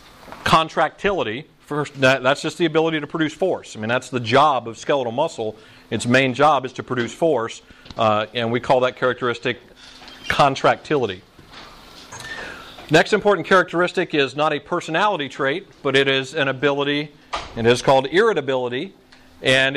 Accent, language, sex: American, Japanese, male